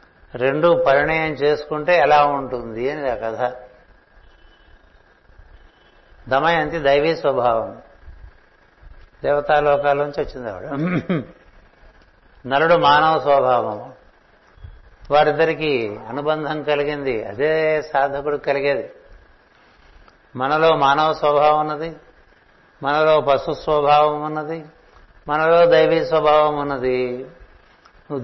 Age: 60-79